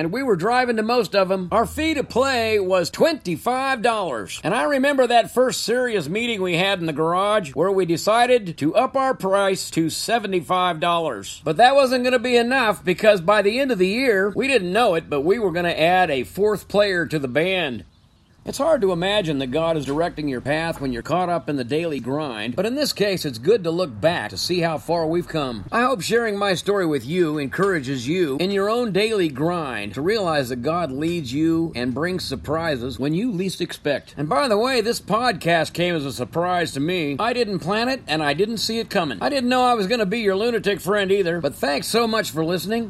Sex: male